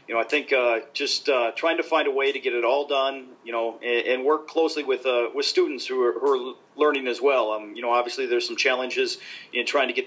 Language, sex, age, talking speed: English, male, 40-59, 270 wpm